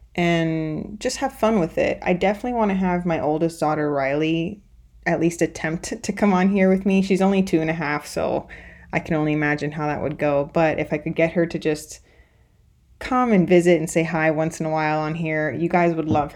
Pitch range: 155-185 Hz